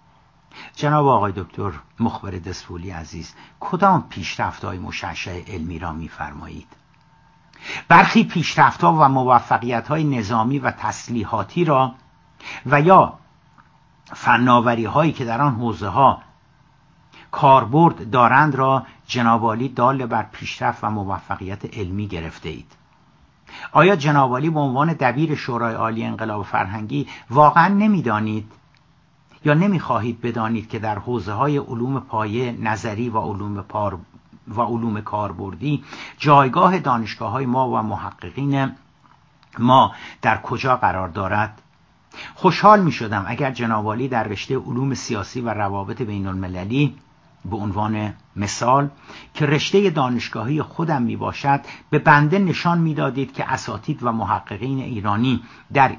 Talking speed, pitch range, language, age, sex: 115 wpm, 105-140 Hz, Persian, 60-79, male